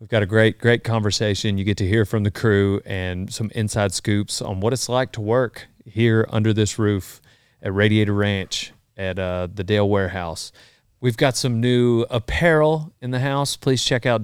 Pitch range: 100-120 Hz